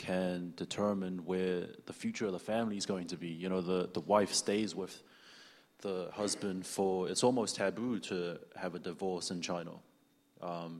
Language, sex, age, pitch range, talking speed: English, male, 20-39, 90-100 Hz, 180 wpm